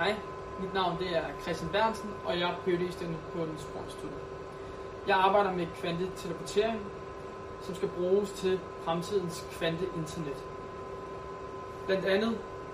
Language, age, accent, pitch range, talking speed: Danish, 20-39, native, 175-220 Hz, 120 wpm